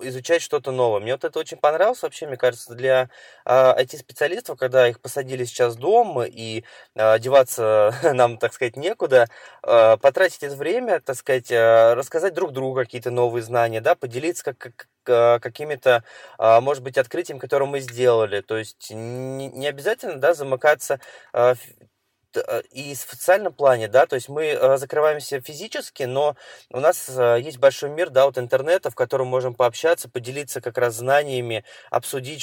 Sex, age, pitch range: male, 20-39, 115-140 Hz